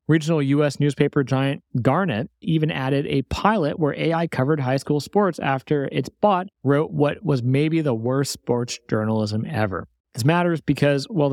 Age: 30-49